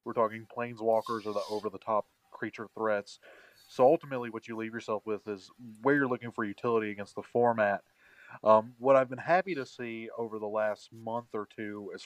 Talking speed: 190 wpm